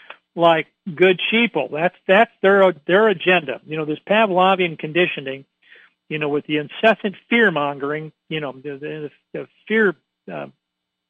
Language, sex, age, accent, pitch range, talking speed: English, male, 50-69, American, 160-215 Hz, 145 wpm